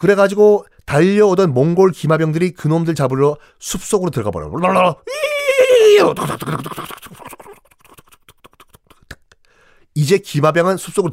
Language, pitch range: Korean, 130-200 Hz